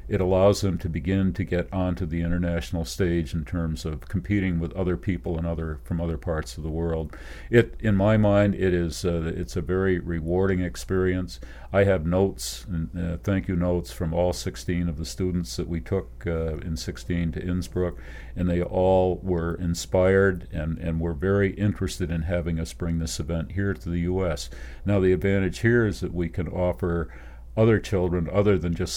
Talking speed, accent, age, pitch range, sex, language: 195 wpm, American, 50-69, 80-95 Hz, male, English